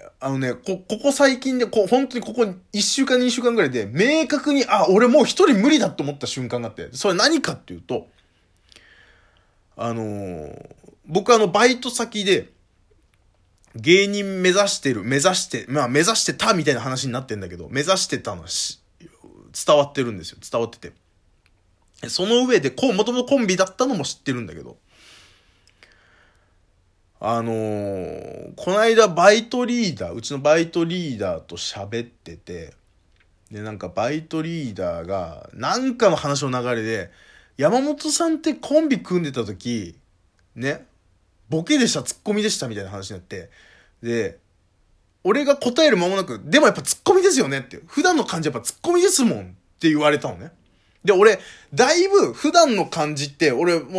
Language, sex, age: Japanese, male, 20-39